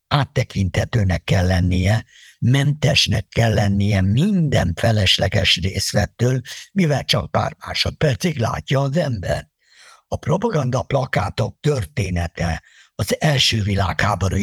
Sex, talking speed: male, 95 wpm